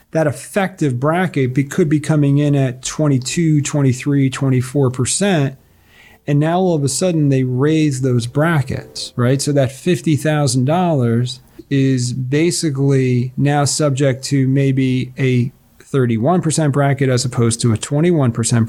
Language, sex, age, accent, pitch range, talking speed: English, male, 40-59, American, 125-150 Hz, 125 wpm